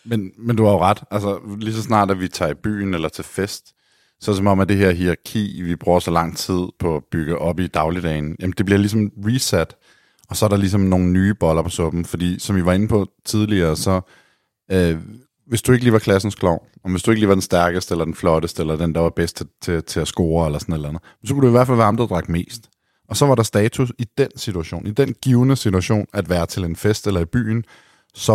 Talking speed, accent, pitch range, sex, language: 265 wpm, native, 85-110 Hz, male, Danish